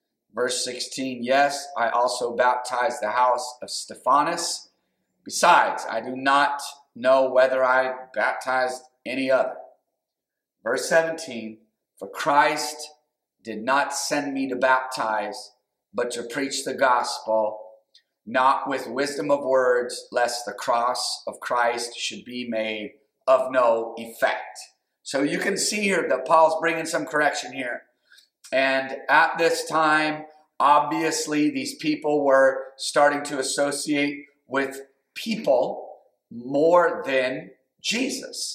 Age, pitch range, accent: 30-49, 125-150 Hz, American